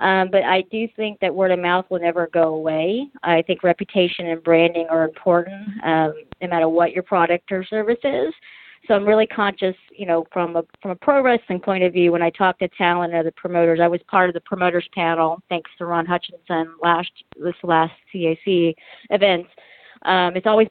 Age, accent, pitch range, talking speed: 40-59, American, 165-195 Hz, 205 wpm